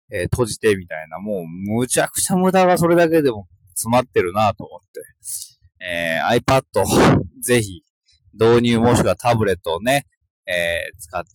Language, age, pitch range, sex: Japanese, 20-39, 100-160 Hz, male